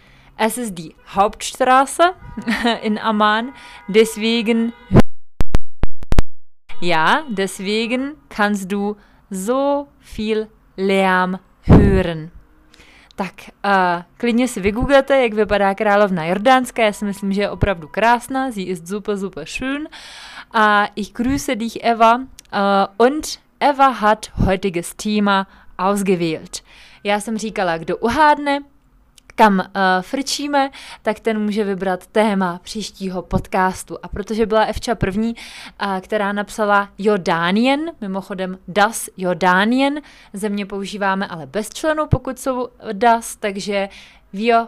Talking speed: 115 wpm